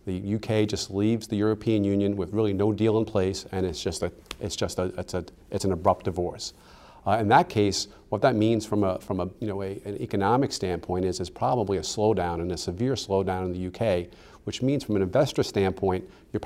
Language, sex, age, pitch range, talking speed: English, male, 40-59, 95-110 Hz, 225 wpm